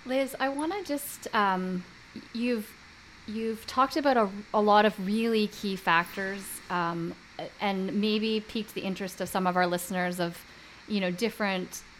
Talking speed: 155 wpm